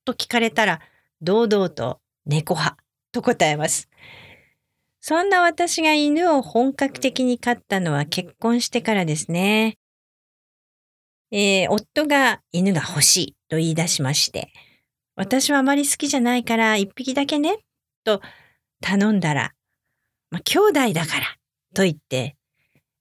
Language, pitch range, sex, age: English, 160-250 Hz, female, 40-59